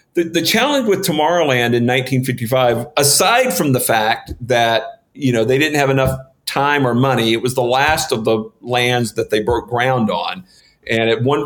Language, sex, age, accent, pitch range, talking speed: English, male, 50-69, American, 115-140 Hz, 185 wpm